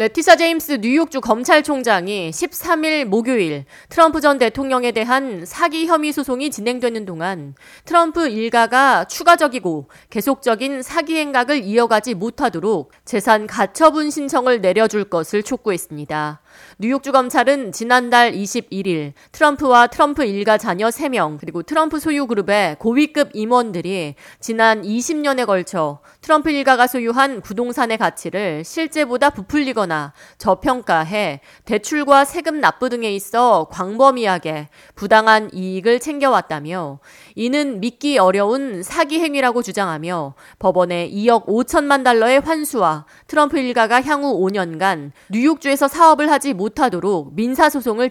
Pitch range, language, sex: 195-280 Hz, Korean, female